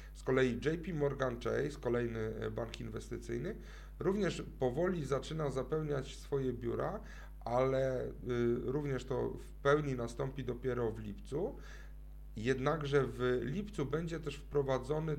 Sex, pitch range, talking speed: male, 125-150 Hz, 115 wpm